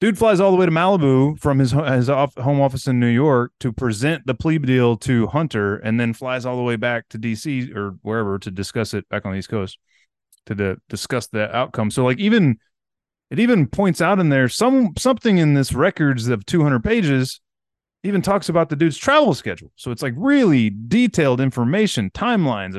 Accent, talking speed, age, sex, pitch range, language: American, 205 wpm, 30-49, male, 120-180 Hz, English